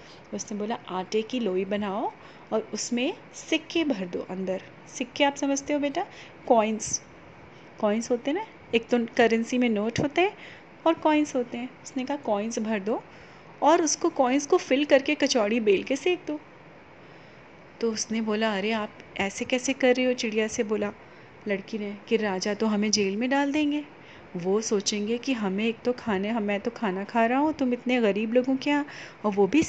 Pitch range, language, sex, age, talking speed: 210-280 Hz, Hindi, female, 30-49, 190 wpm